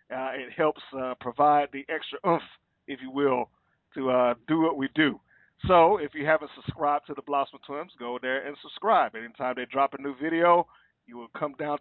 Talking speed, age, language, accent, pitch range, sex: 205 wpm, 50-69, English, American, 135-175 Hz, male